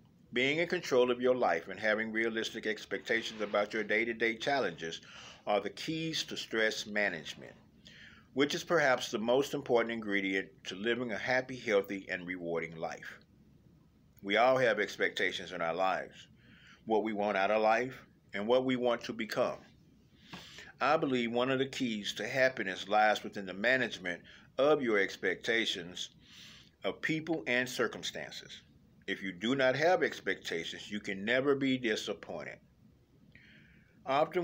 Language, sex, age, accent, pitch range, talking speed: English, male, 50-69, American, 105-135 Hz, 150 wpm